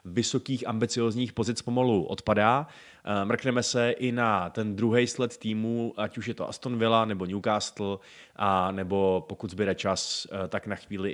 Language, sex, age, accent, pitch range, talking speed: Czech, male, 20-39, native, 100-120 Hz, 155 wpm